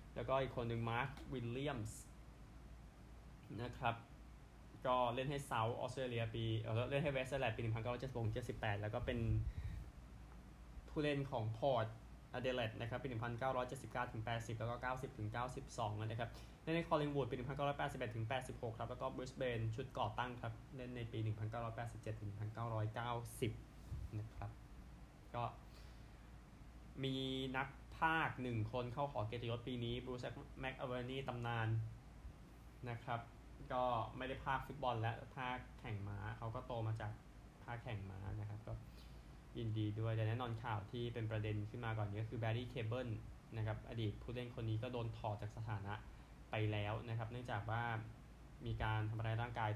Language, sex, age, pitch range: Thai, male, 20-39, 110-125 Hz